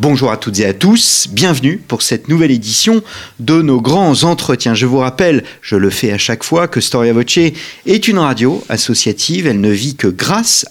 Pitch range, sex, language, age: 110-160 Hz, male, French, 40-59